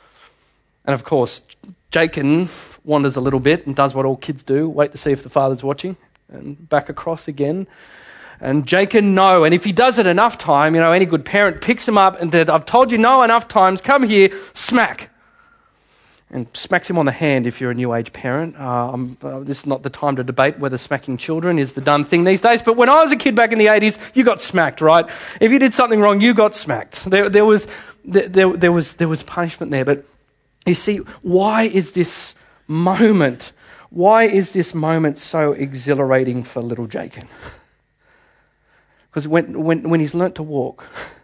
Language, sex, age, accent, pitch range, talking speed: English, male, 30-49, Australian, 135-190 Hz, 200 wpm